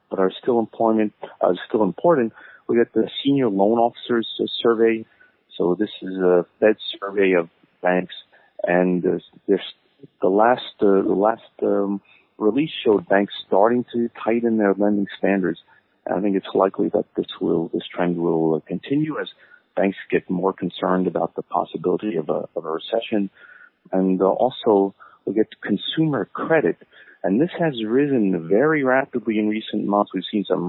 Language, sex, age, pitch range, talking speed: English, male, 40-59, 90-115 Hz, 170 wpm